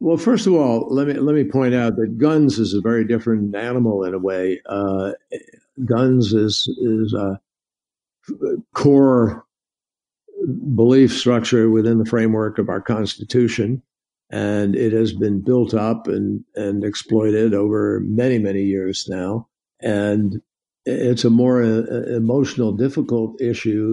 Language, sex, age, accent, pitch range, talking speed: English, male, 60-79, American, 110-125 Hz, 140 wpm